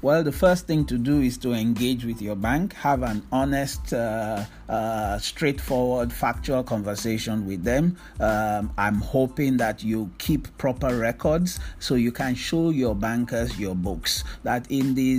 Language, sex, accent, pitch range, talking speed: English, male, Nigerian, 105-130 Hz, 160 wpm